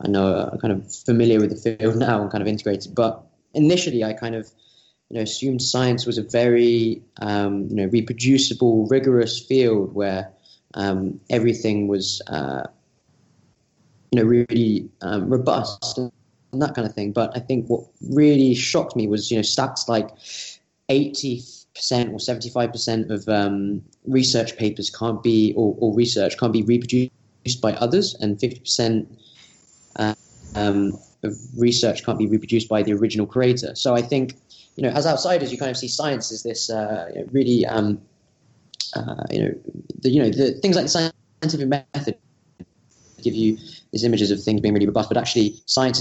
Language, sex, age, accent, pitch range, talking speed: English, male, 20-39, British, 105-125 Hz, 170 wpm